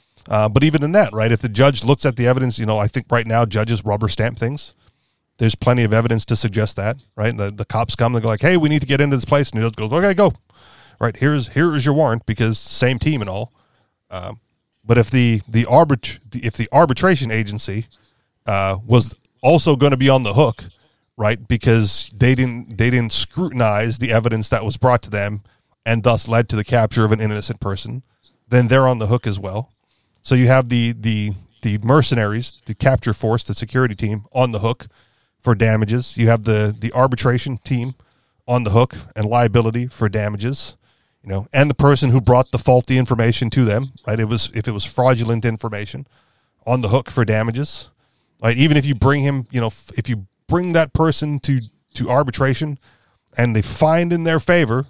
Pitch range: 110-130 Hz